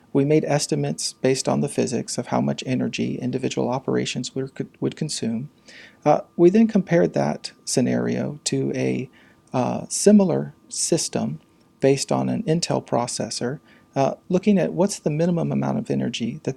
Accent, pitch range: American, 115-180 Hz